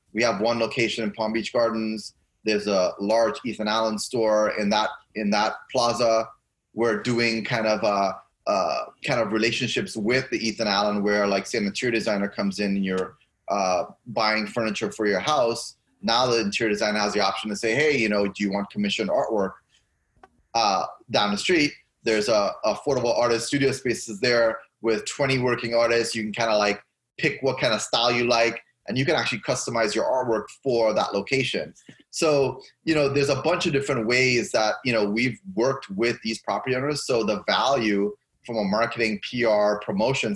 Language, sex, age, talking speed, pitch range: English, male, 20-39, 190 wpm, 105-120 Hz